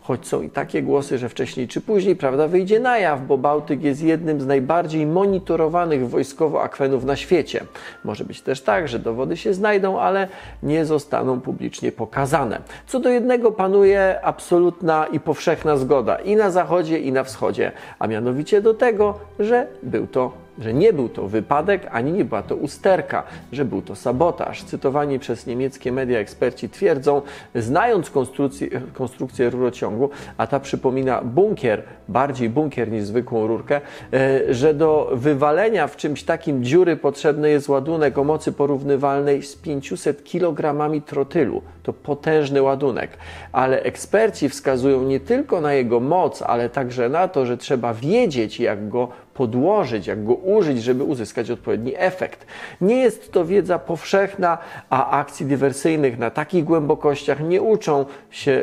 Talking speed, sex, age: 155 wpm, male, 40-59